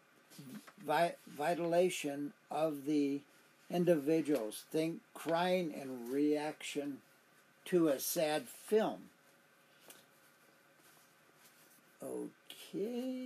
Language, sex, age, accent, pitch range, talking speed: English, male, 60-79, American, 135-180 Hz, 60 wpm